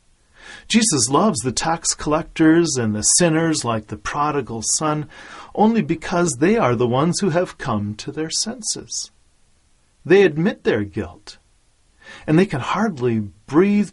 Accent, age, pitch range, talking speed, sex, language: American, 40-59, 105-155 Hz, 140 wpm, male, English